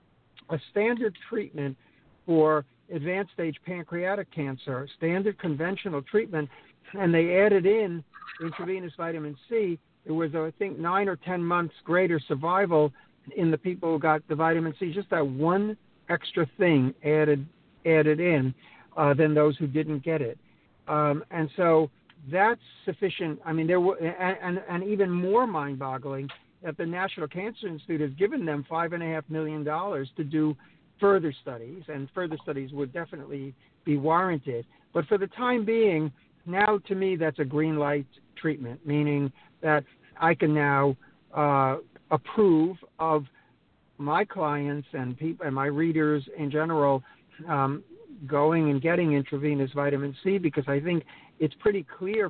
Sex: male